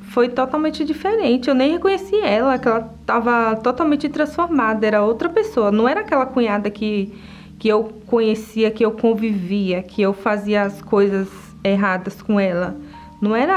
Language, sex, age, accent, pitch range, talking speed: Portuguese, female, 20-39, Brazilian, 210-260 Hz, 160 wpm